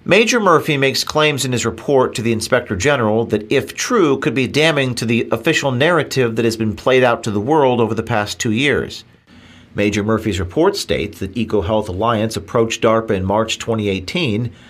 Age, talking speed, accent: 40-59, 190 wpm, American